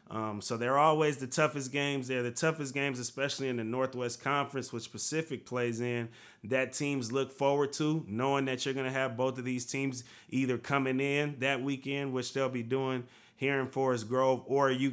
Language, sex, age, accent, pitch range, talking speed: English, male, 30-49, American, 120-135 Hz, 200 wpm